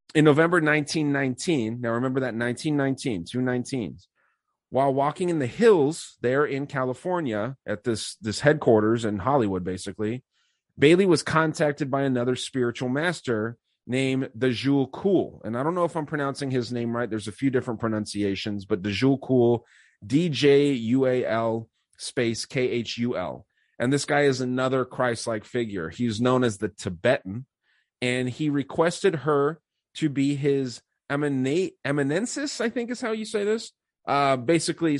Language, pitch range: English, 115-140 Hz